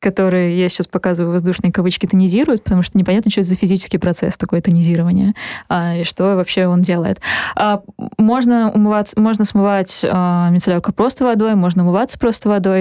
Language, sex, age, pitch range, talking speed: Russian, female, 20-39, 175-210 Hz, 175 wpm